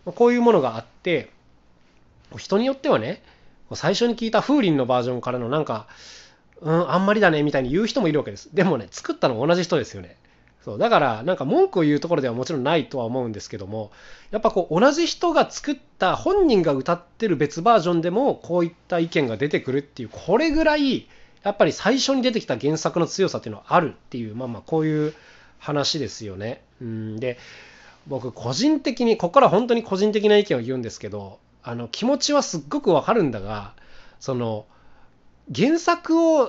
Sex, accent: male, native